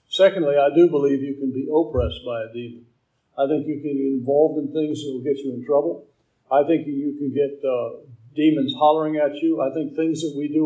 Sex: male